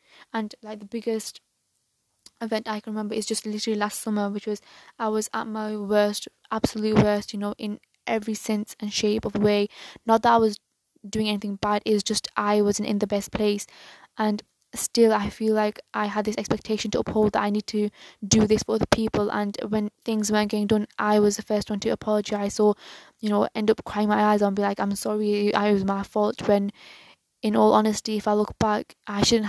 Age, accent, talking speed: 10-29, British, 215 wpm